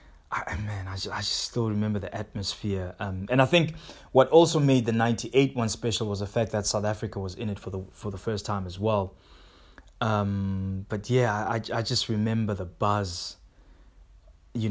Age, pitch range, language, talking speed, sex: 20-39, 95-130 Hz, English, 195 wpm, male